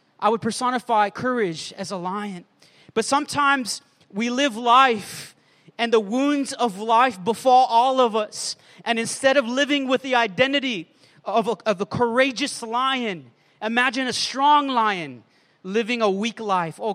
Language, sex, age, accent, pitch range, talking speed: English, male, 30-49, American, 230-280 Hz, 150 wpm